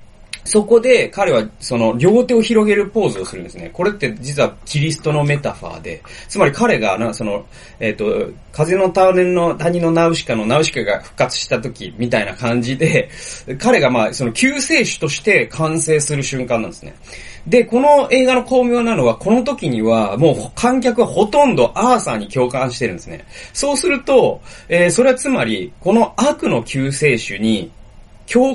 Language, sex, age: Japanese, male, 30-49